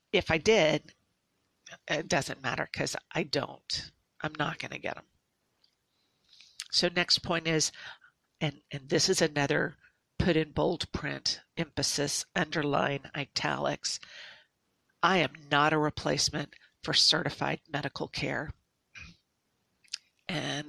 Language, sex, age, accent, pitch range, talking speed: English, female, 50-69, American, 150-185 Hz, 120 wpm